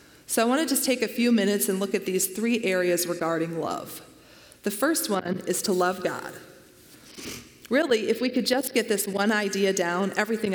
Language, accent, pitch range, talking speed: English, American, 180-215 Hz, 195 wpm